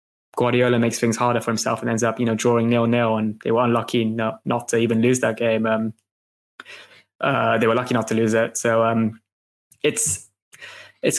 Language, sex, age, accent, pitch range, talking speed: English, male, 20-39, British, 110-120 Hz, 200 wpm